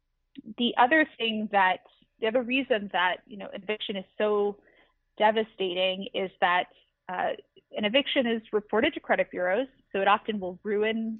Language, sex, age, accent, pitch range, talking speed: English, female, 30-49, American, 190-230 Hz, 155 wpm